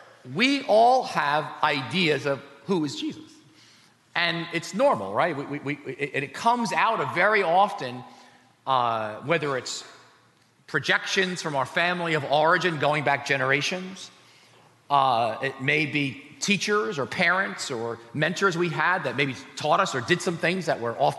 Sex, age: male, 40-59